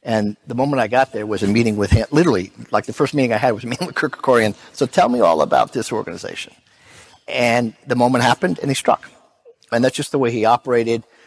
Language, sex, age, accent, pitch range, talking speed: English, male, 50-69, American, 110-125 Hz, 240 wpm